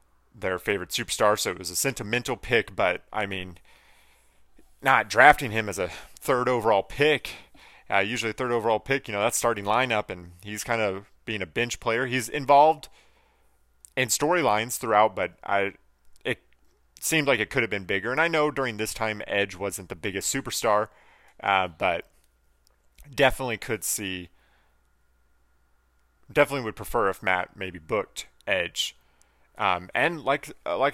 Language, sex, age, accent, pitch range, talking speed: English, male, 30-49, American, 90-130 Hz, 155 wpm